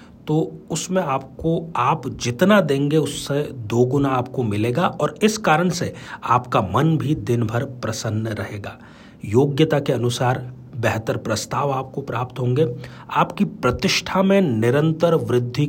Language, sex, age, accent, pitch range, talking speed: Hindi, male, 40-59, native, 120-155 Hz, 130 wpm